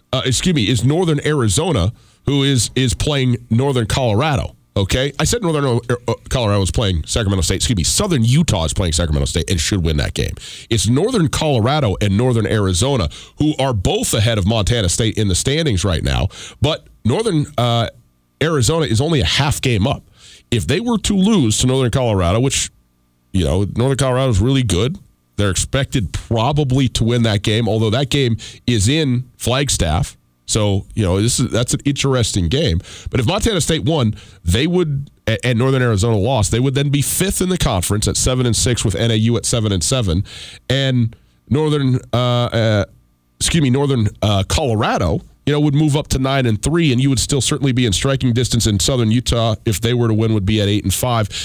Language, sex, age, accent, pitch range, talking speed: English, male, 40-59, American, 100-135 Hz, 200 wpm